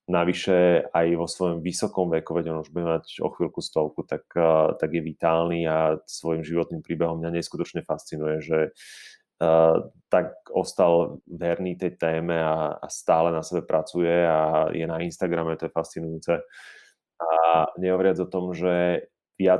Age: 30-49